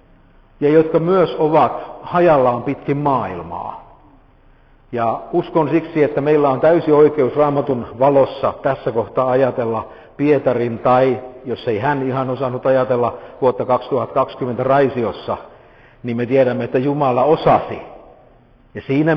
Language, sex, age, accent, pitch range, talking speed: Finnish, male, 50-69, native, 110-135 Hz, 120 wpm